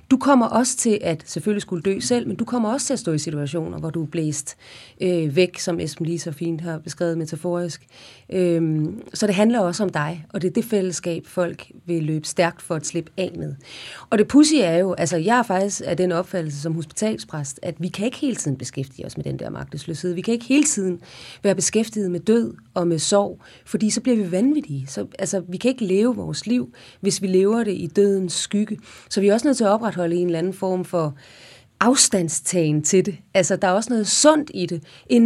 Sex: female